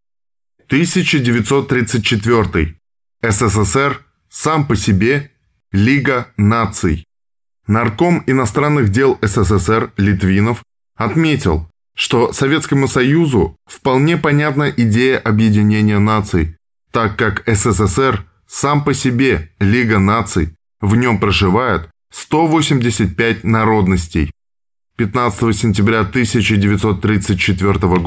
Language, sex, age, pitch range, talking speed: Russian, male, 20-39, 100-130 Hz, 80 wpm